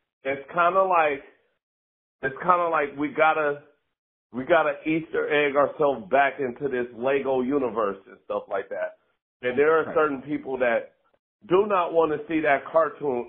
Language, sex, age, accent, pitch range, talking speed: English, male, 40-59, American, 130-170 Hz, 155 wpm